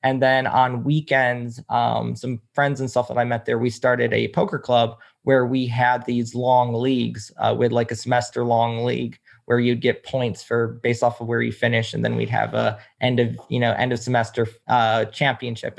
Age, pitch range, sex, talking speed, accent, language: 20-39, 120-135 Hz, male, 215 wpm, American, English